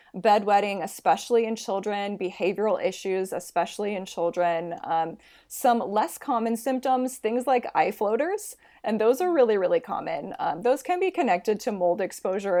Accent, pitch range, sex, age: American, 185-245 Hz, female, 20-39